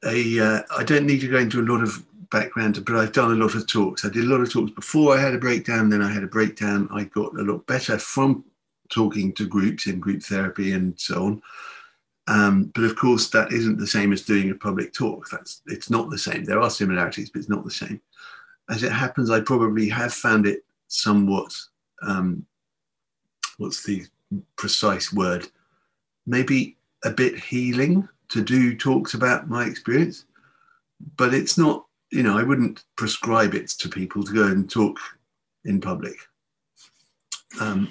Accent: British